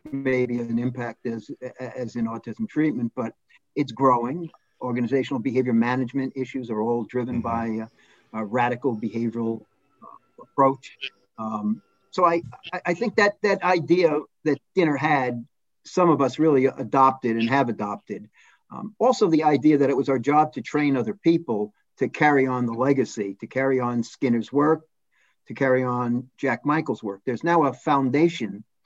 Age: 50-69